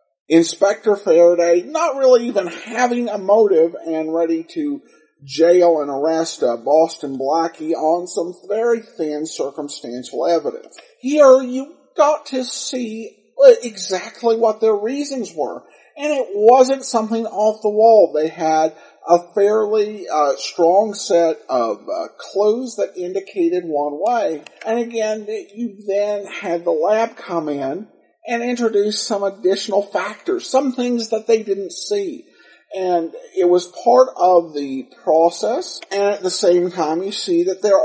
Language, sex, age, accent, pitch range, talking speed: English, male, 50-69, American, 165-230 Hz, 145 wpm